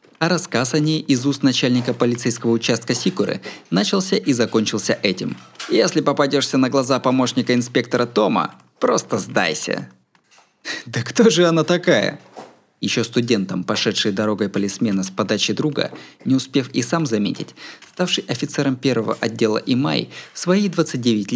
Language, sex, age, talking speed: Russian, male, 20-39, 140 wpm